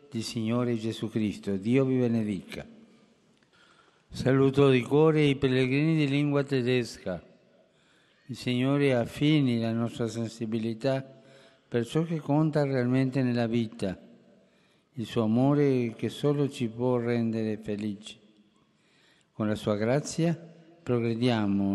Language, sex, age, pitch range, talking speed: Italian, male, 50-69, 115-145 Hz, 115 wpm